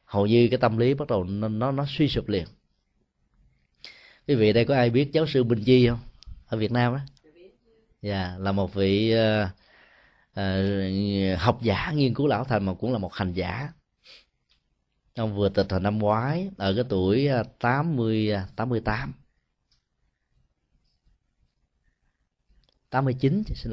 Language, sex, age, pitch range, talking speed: Vietnamese, male, 20-39, 100-125 Hz, 155 wpm